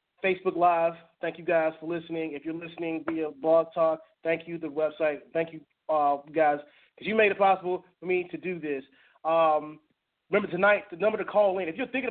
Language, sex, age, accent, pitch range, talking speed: English, male, 30-49, American, 170-205 Hz, 210 wpm